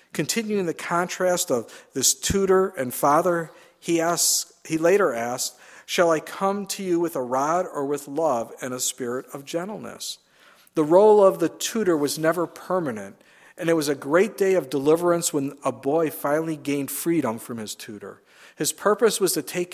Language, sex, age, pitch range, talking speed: English, male, 50-69, 135-170 Hz, 180 wpm